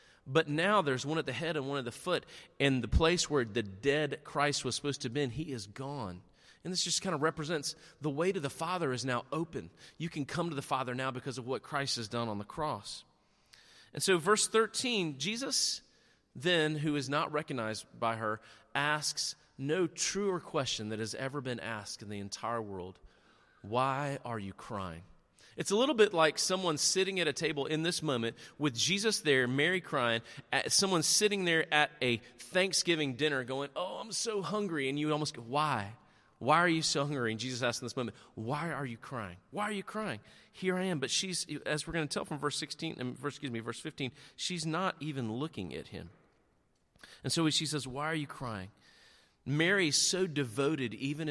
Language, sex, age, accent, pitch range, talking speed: English, male, 40-59, American, 125-165 Hz, 205 wpm